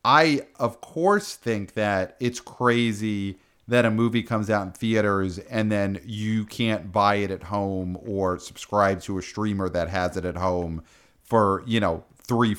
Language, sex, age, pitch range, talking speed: English, male, 40-59, 95-130 Hz, 170 wpm